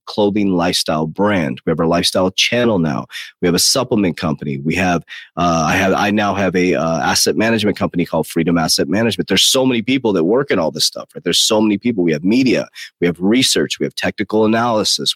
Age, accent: 30-49, American